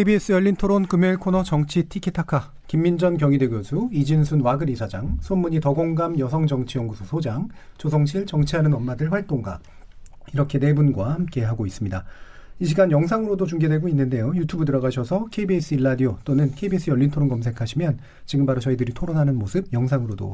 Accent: native